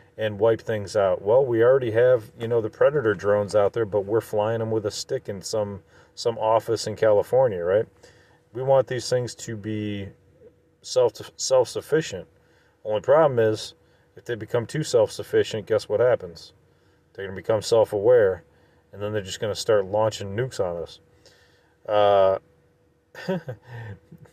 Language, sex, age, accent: English, male, 40-59, American